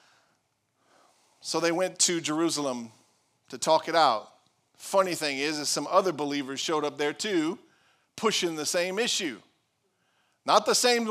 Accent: American